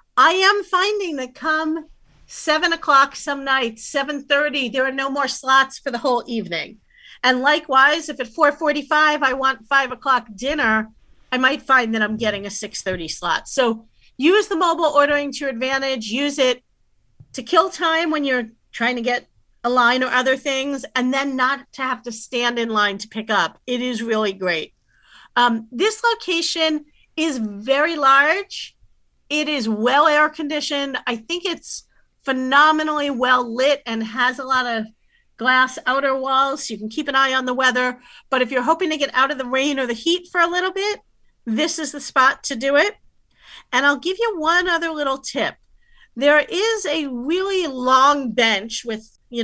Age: 40-59